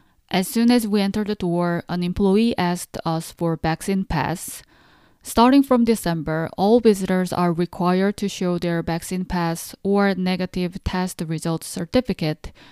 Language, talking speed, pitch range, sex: English, 145 wpm, 175-215 Hz, female